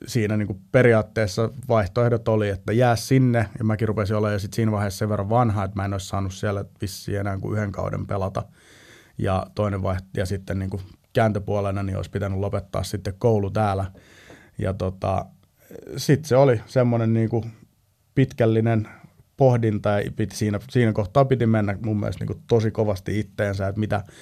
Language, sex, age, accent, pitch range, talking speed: Finnish, male, 30-49, native, 100-115 Hz, 165 wpm